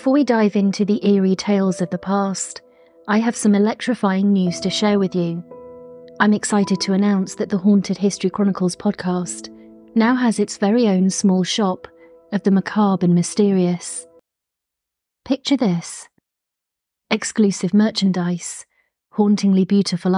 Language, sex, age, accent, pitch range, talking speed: English, female, 30-49, British, 180-205 Hz, 140 wpm